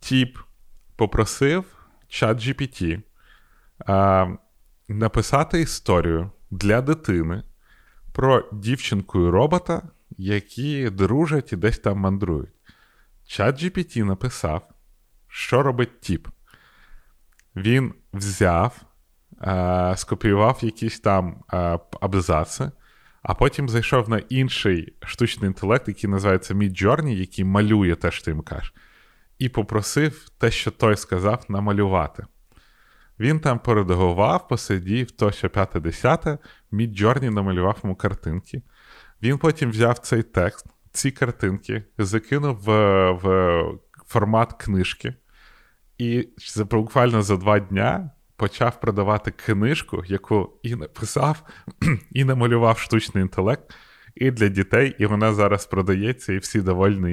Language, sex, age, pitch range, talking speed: Ukrainian, male, 30-49, 95-120 Hz, 110 wpm